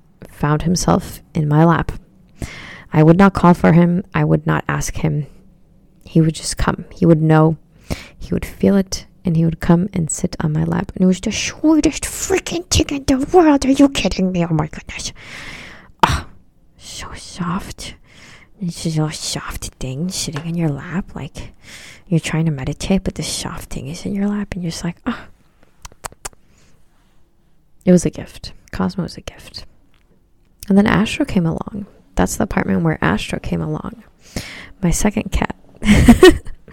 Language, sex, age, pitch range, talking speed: English, female, 20-39, 150-195 Hz, 175 wpm